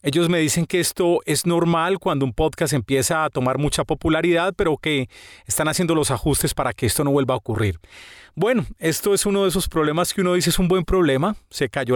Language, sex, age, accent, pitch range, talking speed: Spanish, male, 30-49, Colombian, 130-185 Hz, 220 wpm